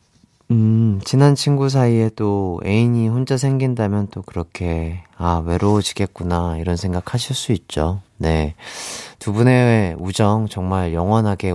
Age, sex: 30-49, male